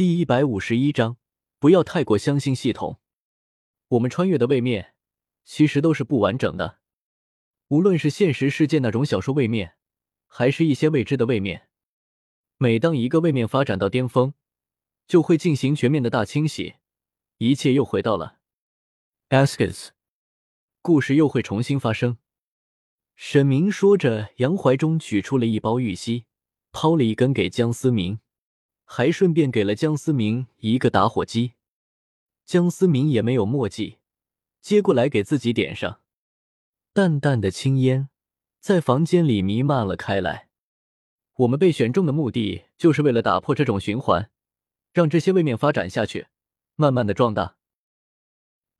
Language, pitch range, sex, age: Chinese, 110-155 Hz, male, 20-39